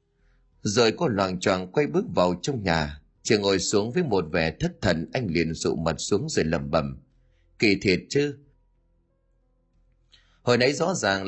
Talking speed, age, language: 170 wpm, 30-49, Vietnamese